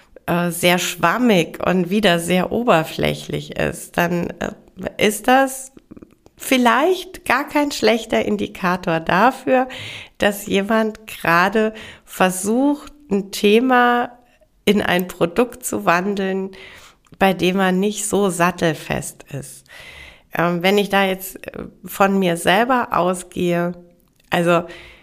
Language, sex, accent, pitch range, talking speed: German, female, German, 175-220 Hz, 105 wpm